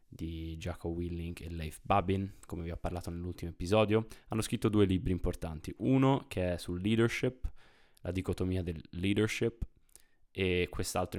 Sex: male